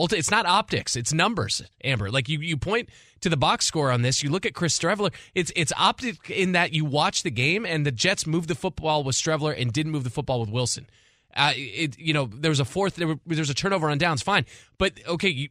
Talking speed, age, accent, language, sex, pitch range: 240 wpm, 20-39, American, English, male, 135-185 Hz